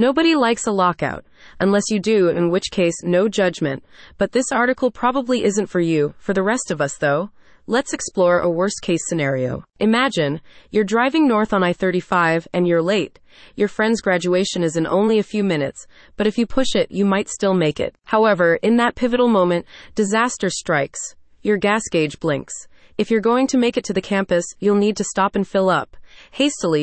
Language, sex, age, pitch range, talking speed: English, female, 30-49, 170-230 Hz, 190 wpm